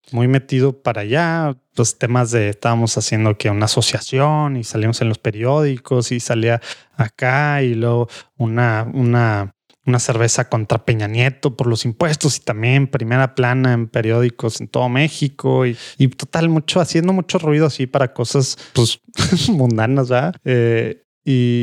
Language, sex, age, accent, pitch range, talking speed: English, male, 20-39, Mexican, 120-140 Hz, 160 wpm